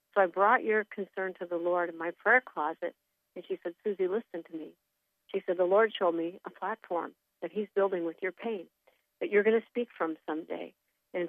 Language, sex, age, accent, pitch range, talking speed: English, female, 50-69, American, 175-210 Hz, 220 wpm